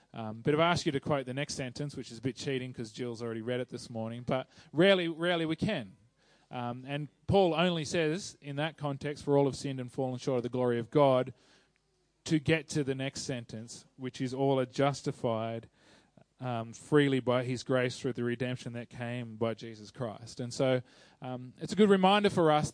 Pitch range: 120-150 Hz